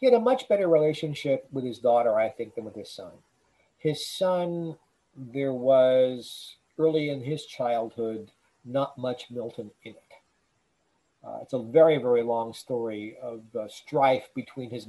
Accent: American